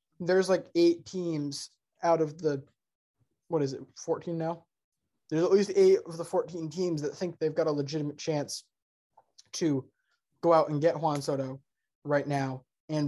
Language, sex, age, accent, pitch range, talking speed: English, male, 20-39, American, 145-165 Hz, 170 wpm